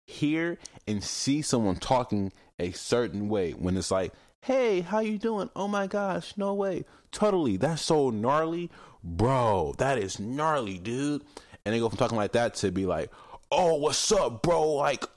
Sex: male